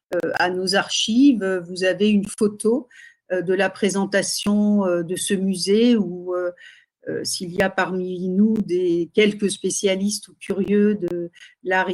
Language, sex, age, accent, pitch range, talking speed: French, female, 50-69, French, 180-225 Hz, 160 wpm